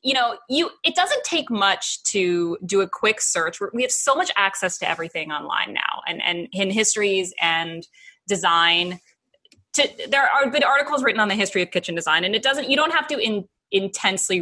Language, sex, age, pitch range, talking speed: English, female, 20-39, 180-240 Hz, 200 wpm